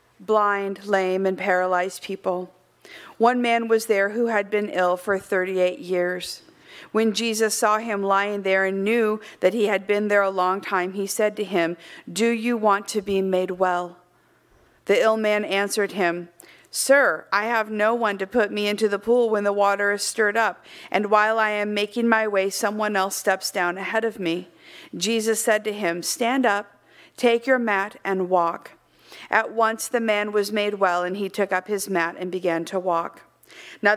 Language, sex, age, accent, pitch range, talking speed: English, female, 50-69, American, 185-230 Hz, 190 wpm